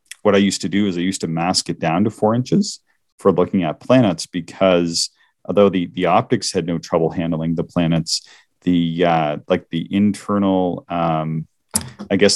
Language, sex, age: English, male, 30-49